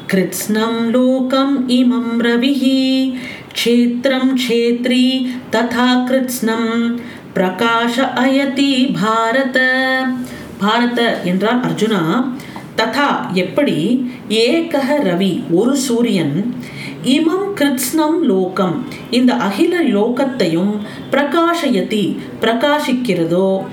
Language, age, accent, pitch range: Tamil, 40-59, native, 215-275 Hz